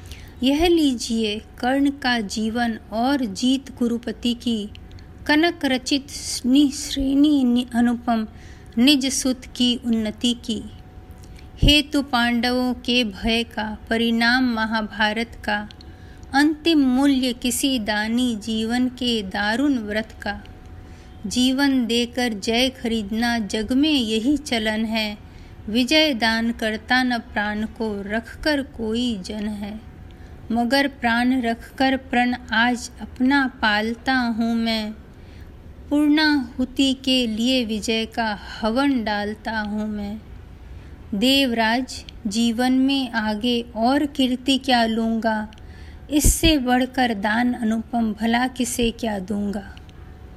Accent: native